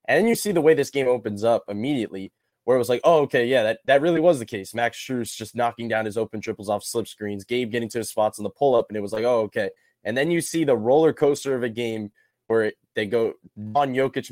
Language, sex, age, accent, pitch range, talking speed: English, male, 10-29, American, 115-155 Hz, 270 wpm